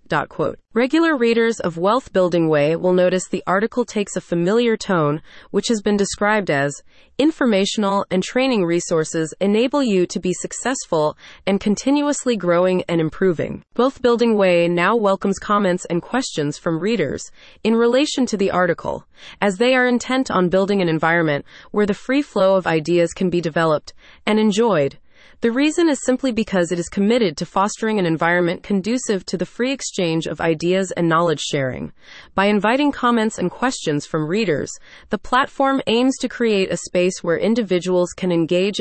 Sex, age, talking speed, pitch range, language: female, 30-49, 165 wpm, 170-230 Hz, English